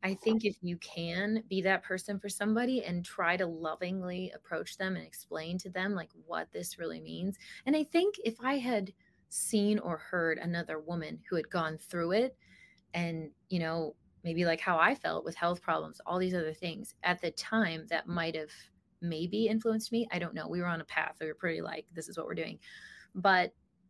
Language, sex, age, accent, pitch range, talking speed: English, female, 20-39, American, 165-200 Hz, 205 wpm